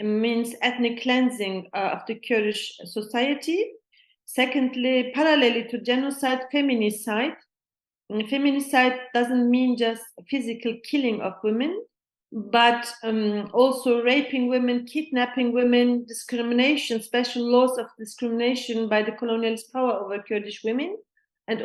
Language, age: English, 40-59